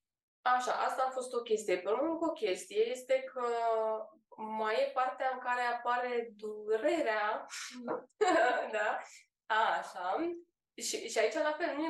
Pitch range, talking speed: 215-280 Hz, 145 wpm